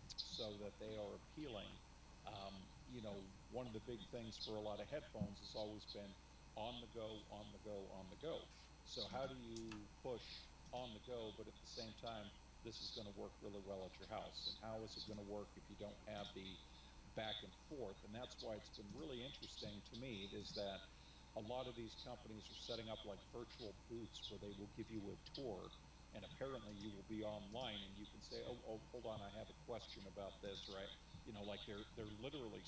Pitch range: 100-115 Hz